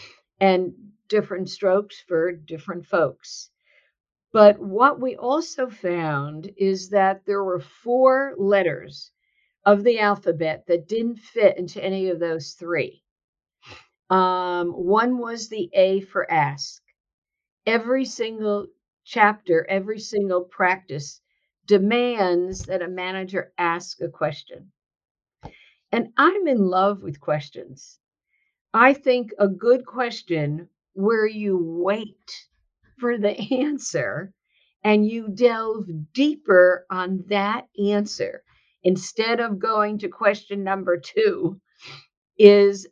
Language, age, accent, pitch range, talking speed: English, 50-69, American, 180-230 Hz, 110 wpm